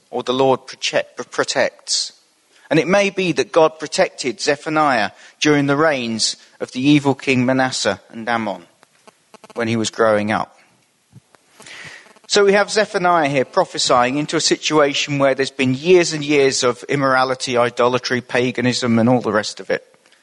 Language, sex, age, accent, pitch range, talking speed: English, male, 40-59, British, 120-170 Hz, 155 wpm